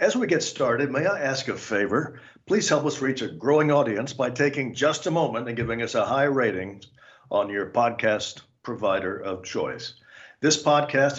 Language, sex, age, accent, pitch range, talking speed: English, male, 50-69, American, 115-140 Hz, 190 wpm